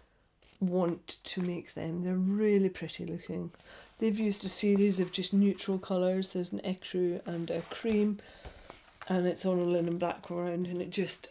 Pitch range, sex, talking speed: 180-205 Hz, female, 165 wpm